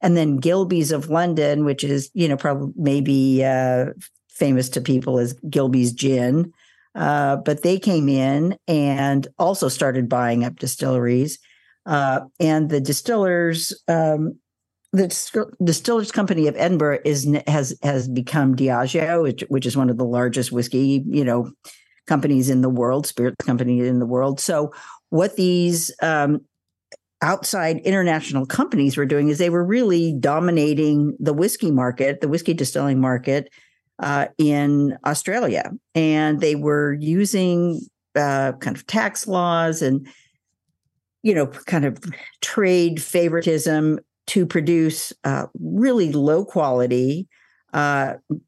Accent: American